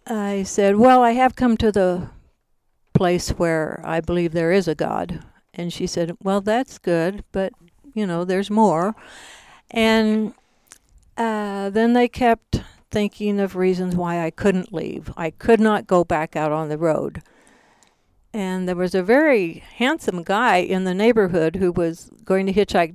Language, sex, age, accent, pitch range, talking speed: English, female, 60-79, American, 170-215 Hz, 165 wpm